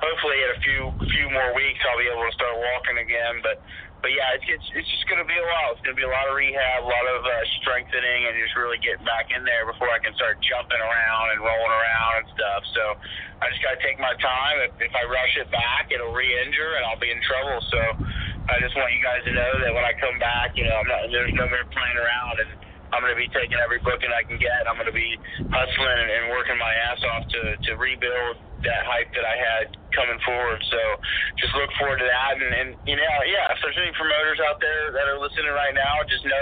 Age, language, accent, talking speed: 30-49, English, American, 255 wpm